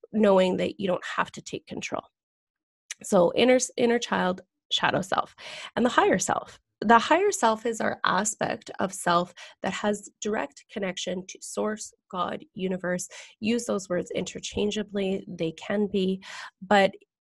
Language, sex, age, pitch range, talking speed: English, female, 20-39, 185-225 Hz, 145 wpm